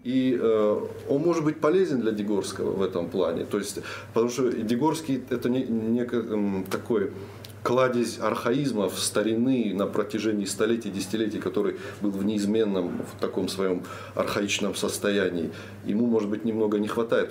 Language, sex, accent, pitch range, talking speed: Russian, male, native, 100-115 Hz, 145 wpm